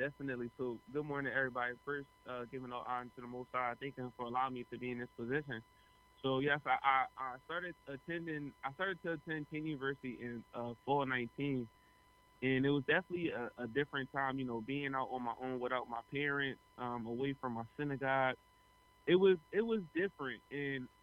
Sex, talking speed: male, 200 wpm